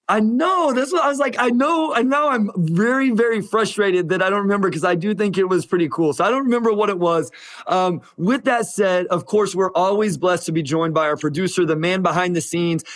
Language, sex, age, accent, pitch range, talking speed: English, male, 30-49, American, 165-205 Hz, 250 wpm